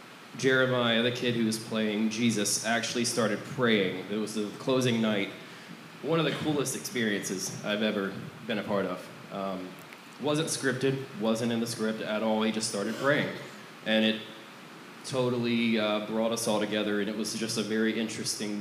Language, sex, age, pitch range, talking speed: English, male, 20-39, 100-115 Hz, 175 wpm